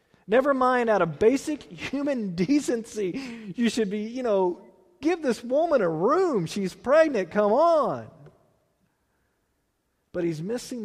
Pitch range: 140-210 Hz